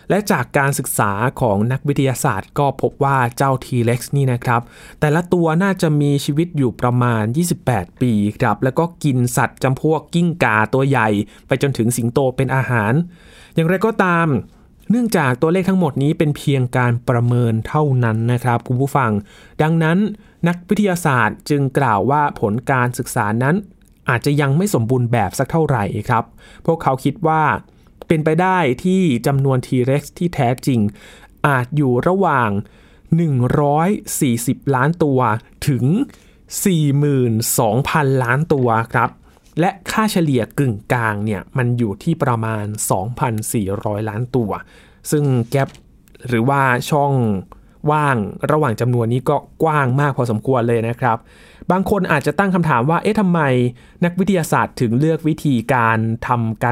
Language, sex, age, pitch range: Thai, male, 20-39, 120-160 Hz